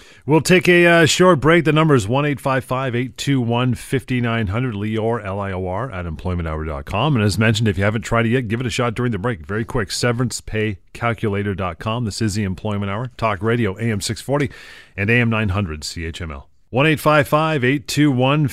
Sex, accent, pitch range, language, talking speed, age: male, American, 100-130 Hz, English, 160 wpm, 40-59